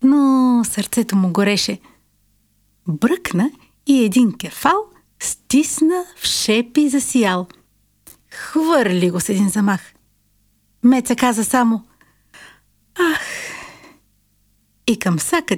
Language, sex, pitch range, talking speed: Bulgarian, female, 175-260 Hz, 90 wpm